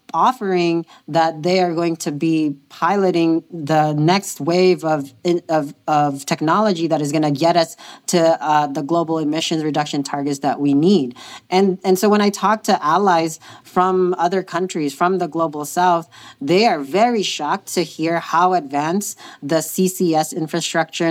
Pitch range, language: 150-175 Hz, English